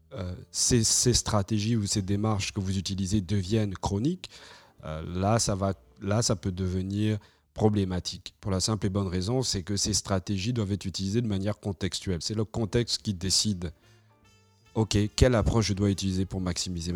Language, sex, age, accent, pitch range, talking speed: French, male, 30-49, French, 95-110 Hz, 175 wpm